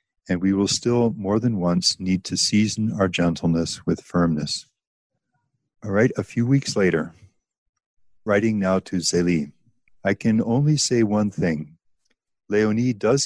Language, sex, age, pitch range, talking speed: English, male, 50-69, 90-105 Hz, 145 wpm